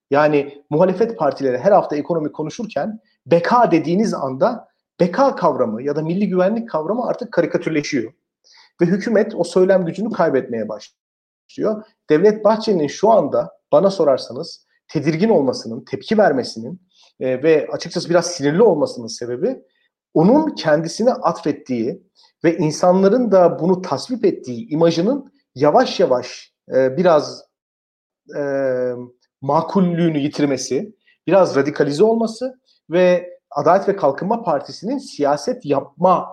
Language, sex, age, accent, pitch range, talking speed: Turkish, male, 40-59, native, 140-210 Hz, 115 wpm